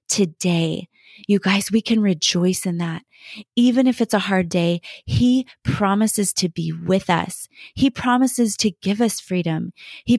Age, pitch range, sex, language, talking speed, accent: 20-39, 180-225 Hz, female, English, 160 wpm, American